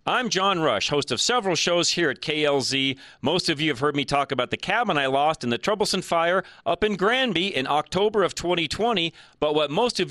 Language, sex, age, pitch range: English, male, 40-59, 140-190 Hz